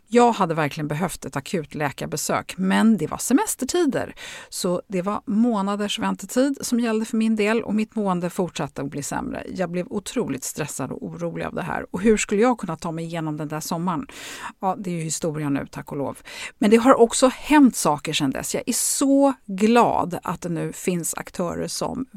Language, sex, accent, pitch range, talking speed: Swedish, female, native, 170-235 Hz, 205 wpm